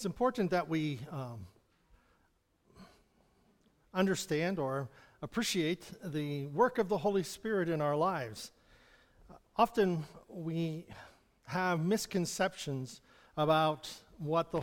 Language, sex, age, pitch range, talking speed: English, male, 50-69, 165-210 Hz, 100 wpm